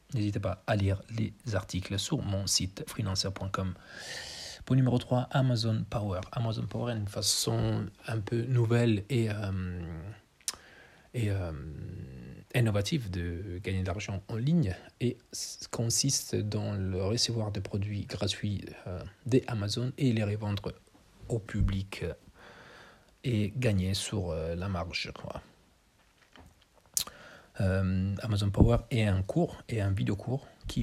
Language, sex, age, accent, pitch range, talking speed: Italian, male, 40-59, French, 95-120 Hz, 130 wpm